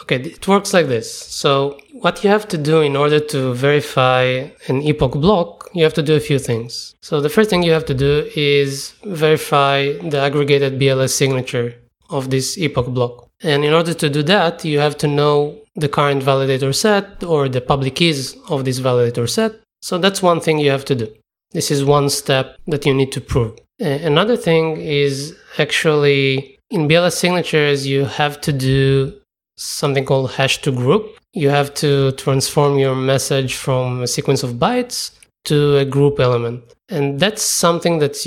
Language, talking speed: English, 185 wpm